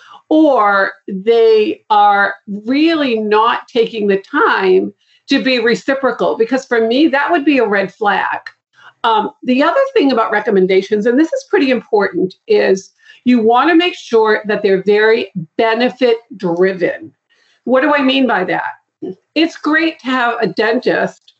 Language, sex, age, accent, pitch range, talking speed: English, female, 50-69, American, 215-315 Hz, 150 wpm